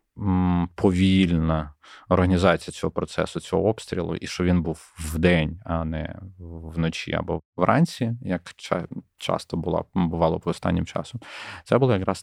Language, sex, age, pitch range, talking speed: Ukrainian, male, 20-39, 85-100 Hz, 130 wpm